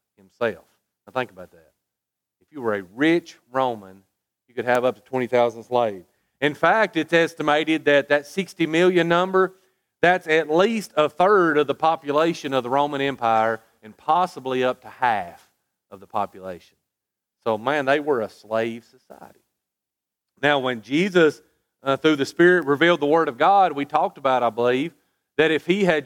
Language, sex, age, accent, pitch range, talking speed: English, male, 40-59, American, 120-155 Hz, 175 wpm